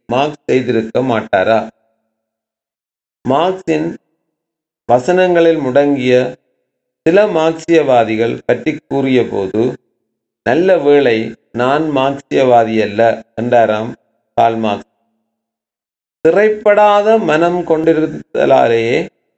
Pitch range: 115-160 Hz